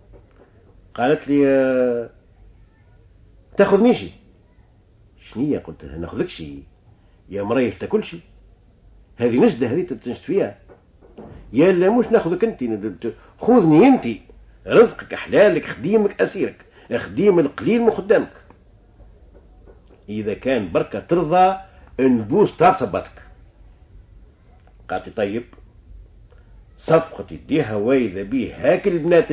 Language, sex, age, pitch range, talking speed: Arabic, male, 50-69, 95-130 Hz, 95 wpm